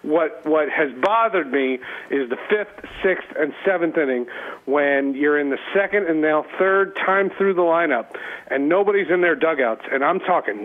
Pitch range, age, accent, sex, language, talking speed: 175-260 Hz, 40-59, American, male, English, 180 wpm